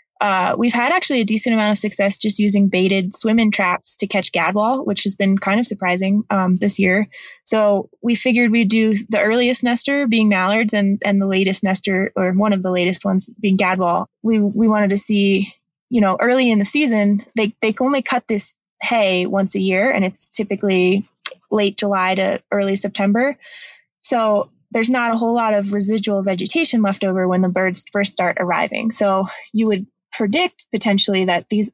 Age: 20-39